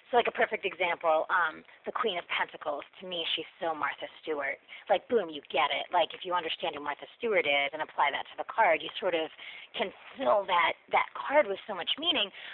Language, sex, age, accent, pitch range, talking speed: English, female, 30-49, American, 170-240 Hz, 225 wpm